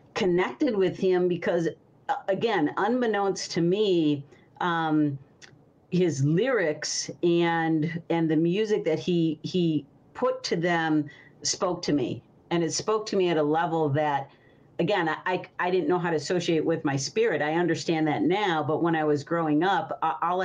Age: 50-69